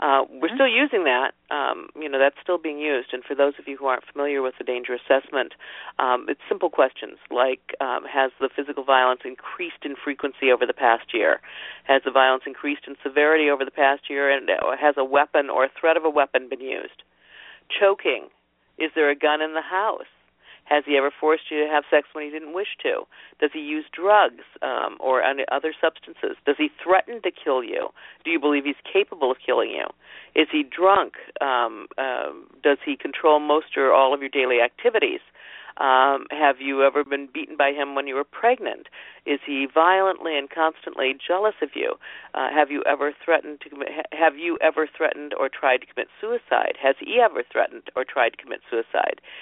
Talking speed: 205 wpm